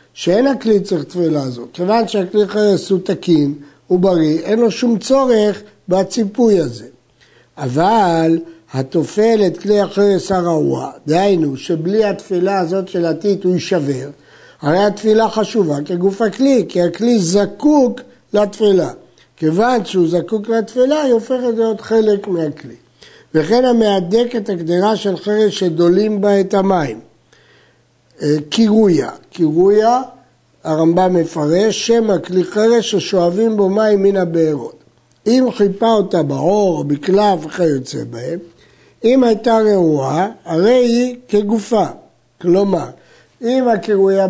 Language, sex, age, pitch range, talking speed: Hebrew, male, 60-79, 170-220 Hz, 115 wpm